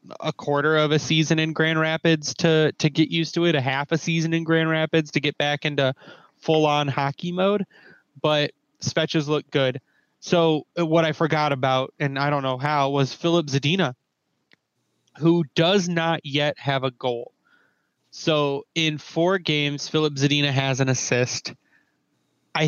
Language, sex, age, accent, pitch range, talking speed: English, male, 30-49, American, 145-170 Hz, 165 wpm